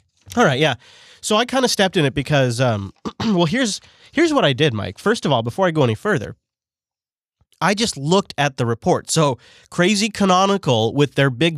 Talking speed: 200 wpm